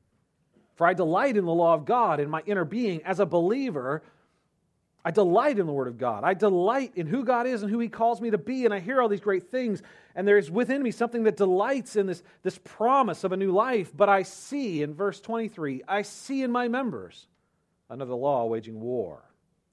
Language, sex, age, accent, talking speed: English, male, 40-59, American, 220 wpm